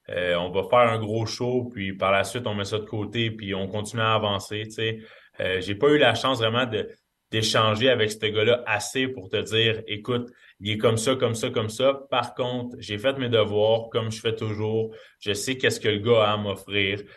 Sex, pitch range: male, 100-120 Hz